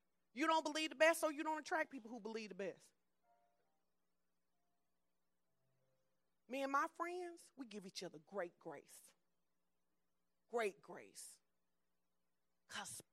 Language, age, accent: English, 40-59, American